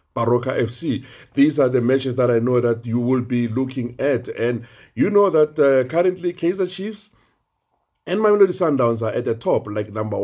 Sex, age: male, 50-69